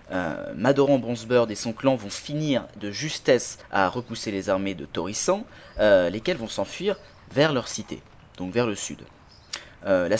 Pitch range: 100-140 Hz